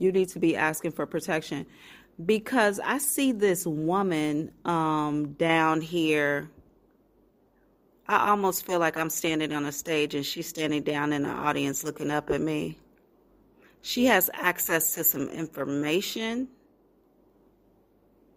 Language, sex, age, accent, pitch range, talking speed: English, female, 40-59, American, 155-190 Hz, 135 wpm